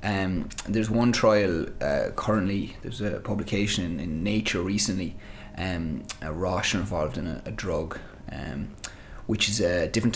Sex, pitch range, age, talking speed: male, 100-110 Hz, 20-39, 155 wpm